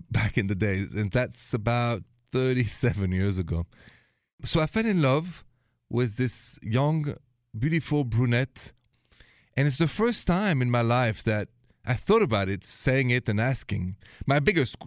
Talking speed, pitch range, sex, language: 155 wpm, 110-135 Hz, male, English